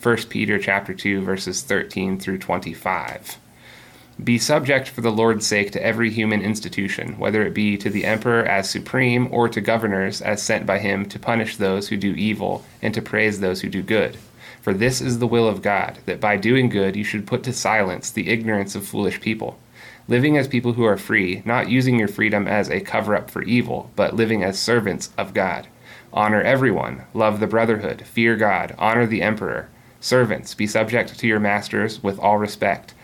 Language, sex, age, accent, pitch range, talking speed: English, male, 30-49, American, 105-120 Hz, 195 wpm